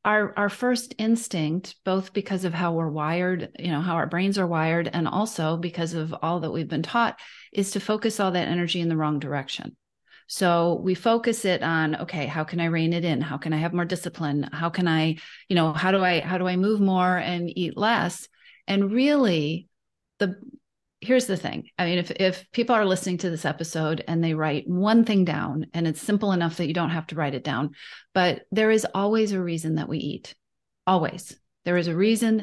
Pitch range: 165-195 Hz